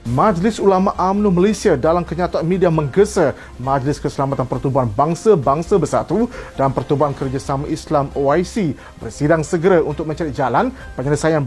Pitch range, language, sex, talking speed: 140-185 Hz, Malay, male, 125 wpm